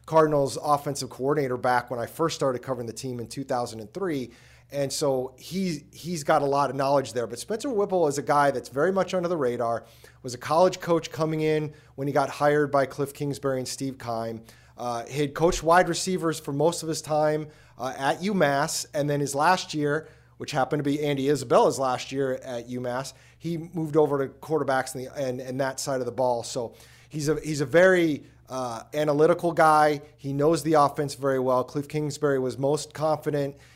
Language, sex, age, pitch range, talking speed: English, male, 30-49, 130-165 Hz, 200 wpm